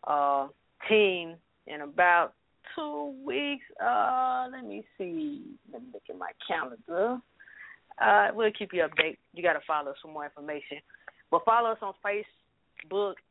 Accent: American